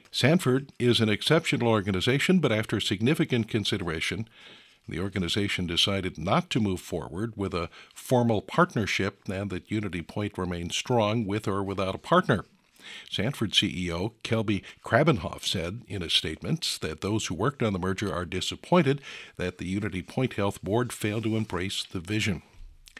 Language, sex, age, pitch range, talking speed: English, male, 60-79, 95-125 Hz, 155 wpm